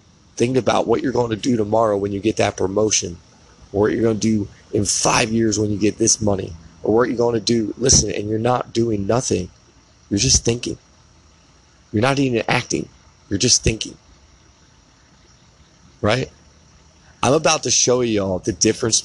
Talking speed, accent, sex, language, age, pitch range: 185 wpm, American, male, English, 30-49, 90-120 Hz